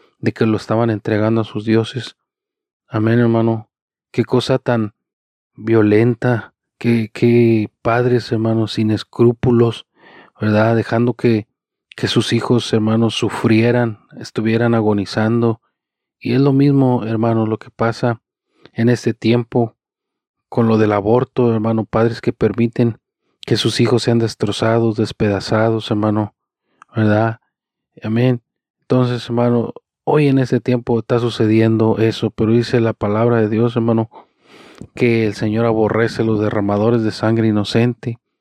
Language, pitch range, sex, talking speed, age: Spanish, 110-120 Hz, male, 130 wpm, 40-59